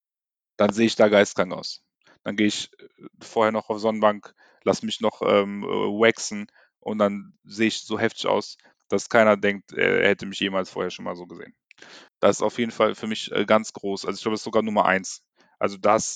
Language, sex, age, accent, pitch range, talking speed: German, male, 10-29, German, 100-115 Hz, 210 wpm